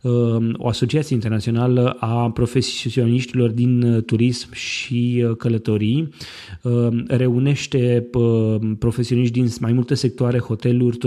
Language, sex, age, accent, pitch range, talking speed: Romanian, male, 20-39, native, 115-135 Hz, 85 wpm